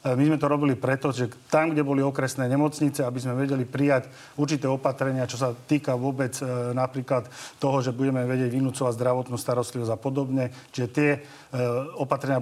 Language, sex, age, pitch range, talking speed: Slovak, male, 40-59, 125-140 Hz, 165 wpm